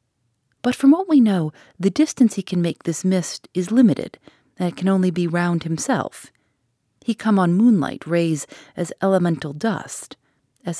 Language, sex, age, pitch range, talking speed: English, female, 40-59, 155-215 Hz, 165 wpm